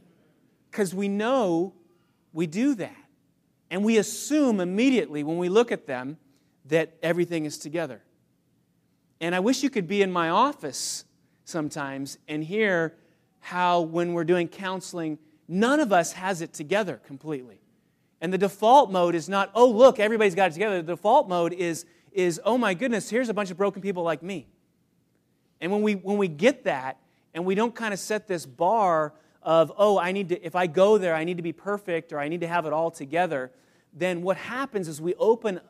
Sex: male